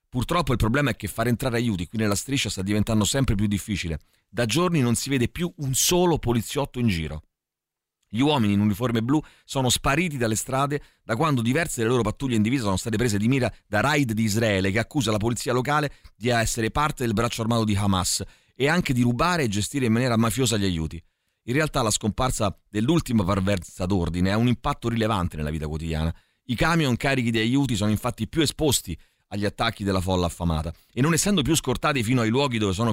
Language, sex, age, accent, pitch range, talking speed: Italian, male, 40-59, native, 100-130 Hz, 210 wpm